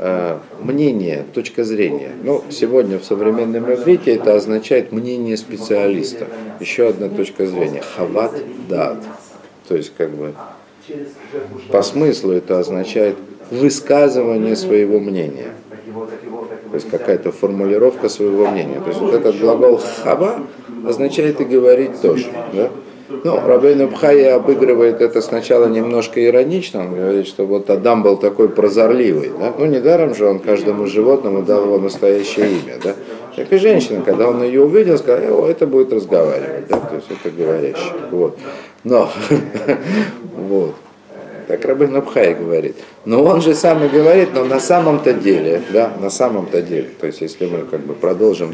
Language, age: Russian, 50-69